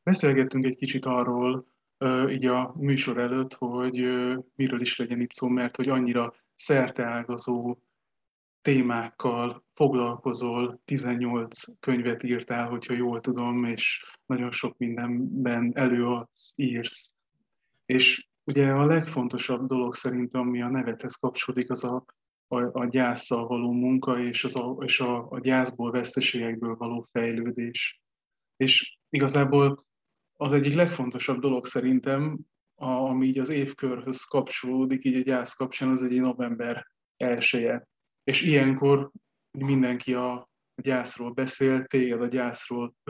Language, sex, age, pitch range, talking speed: Hungarian, male, 20-39, 125-135 Hz, 125 wpm